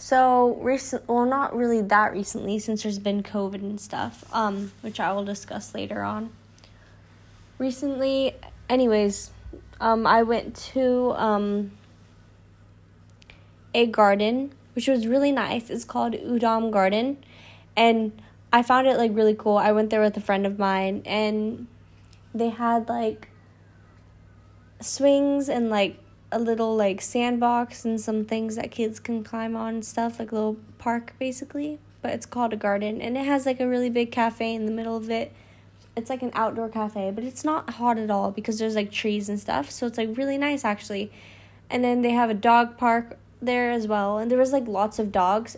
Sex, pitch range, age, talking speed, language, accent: female, 200-235 Hz, 20-39, 180 wpm, English, American